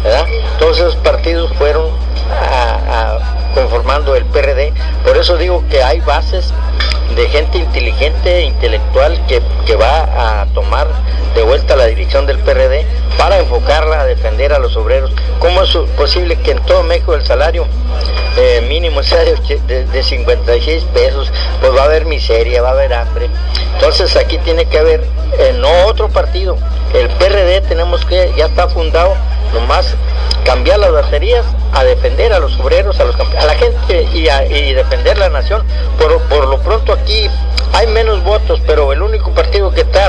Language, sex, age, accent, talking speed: English, male, 50-69, Mexican, 165 wpm